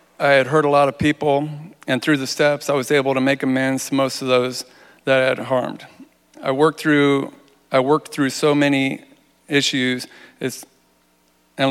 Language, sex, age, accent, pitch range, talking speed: English, male, 40-59, American, 130-145 Hz, 180 wpm